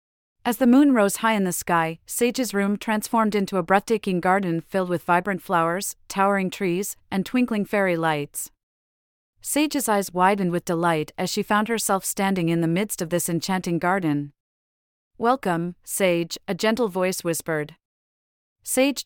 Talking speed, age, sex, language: 155 wpm, 40-59, female, English